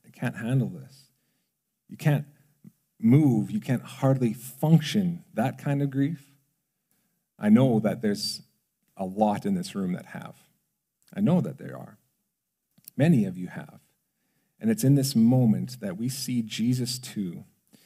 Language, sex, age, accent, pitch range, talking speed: English, male, 40-59, American, 120-170 Hz, 150 wpm